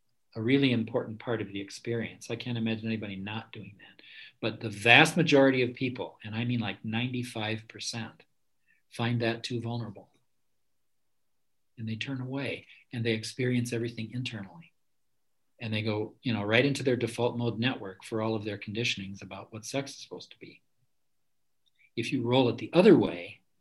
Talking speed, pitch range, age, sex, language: 175 wpm, 110-130 Hz, 50-69, male, English